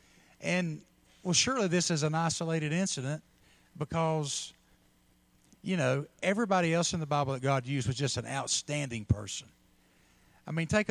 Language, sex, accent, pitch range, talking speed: English, male, American, 125-165 Hz, 150 wpm